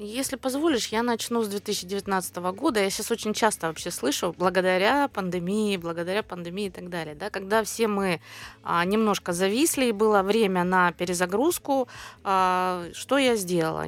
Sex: female